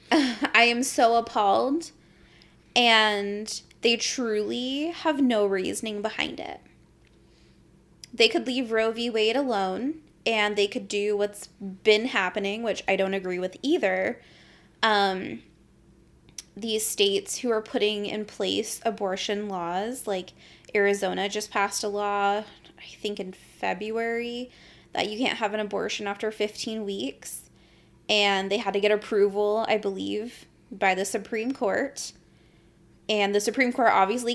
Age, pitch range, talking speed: 20-39, 205-260 Hz, 135 wpm